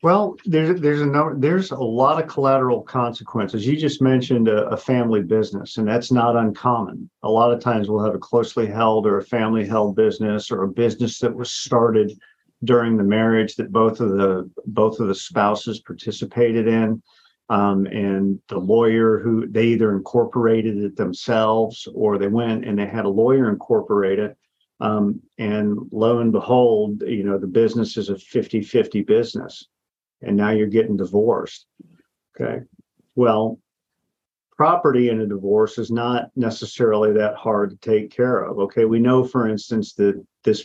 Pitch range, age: 100-120 Hz, 50-69